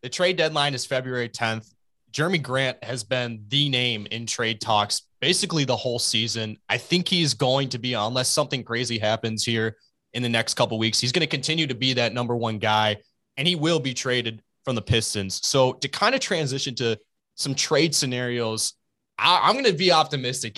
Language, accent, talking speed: English, American, 200 wpm